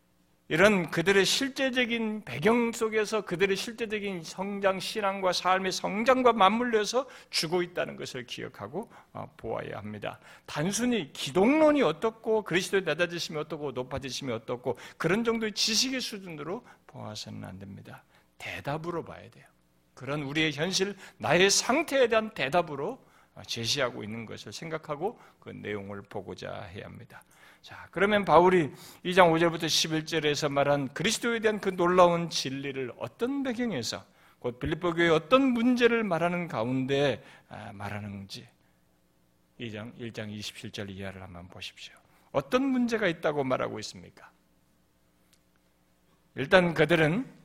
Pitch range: 120-200 Hz